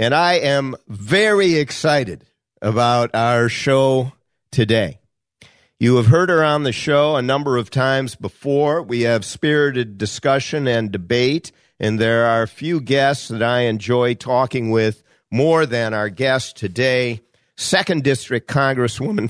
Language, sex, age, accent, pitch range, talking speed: English, male, 50-69, American, 115-140 Hz, 145 wpm